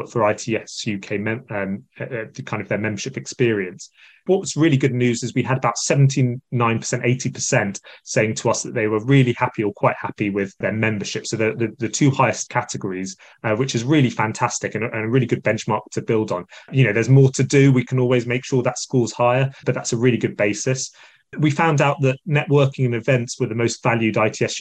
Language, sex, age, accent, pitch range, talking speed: English, male, 20-39, British, 110-130 Hz, 225 wpm